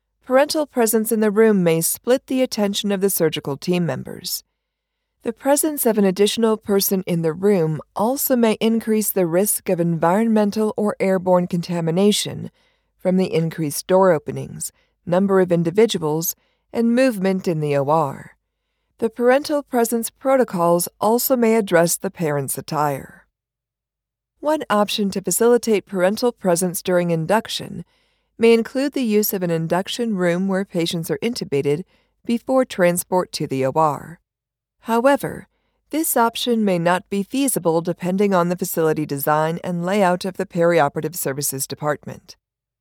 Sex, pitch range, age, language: female, 170-230 Hz, 50-69, English